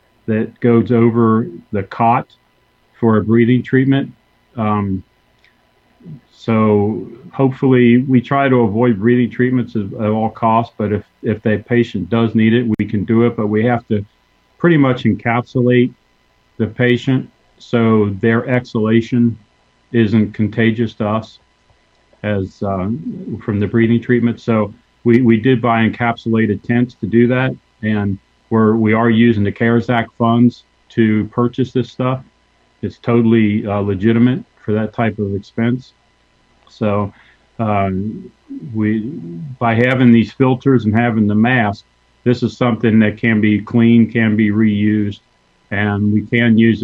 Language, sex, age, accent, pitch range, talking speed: English, male, 40-59, American, 105-120 Hz, 145 wpm